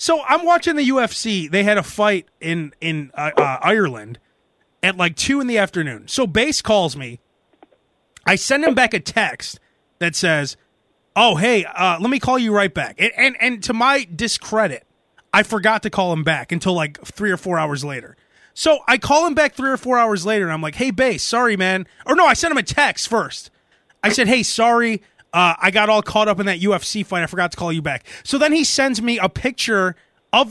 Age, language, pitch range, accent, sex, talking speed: 20-39, English, 185-260 Hz, American, male, 220 wpm